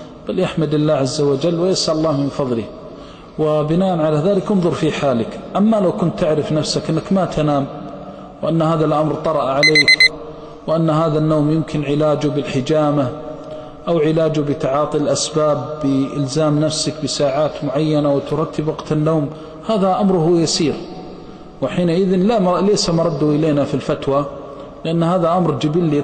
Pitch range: 145-170 Hz